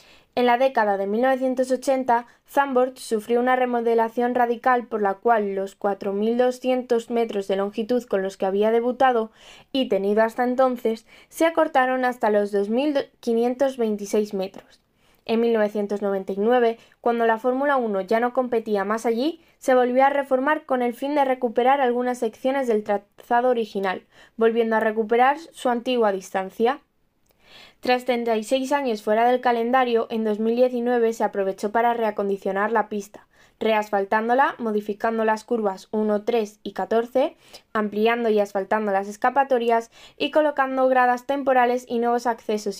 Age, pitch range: 20-39, 215-255 Hz